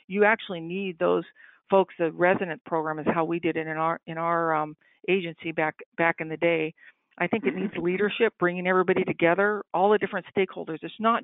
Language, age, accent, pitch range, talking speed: English, 50-69, American, 165-210 Hz, 205 wpm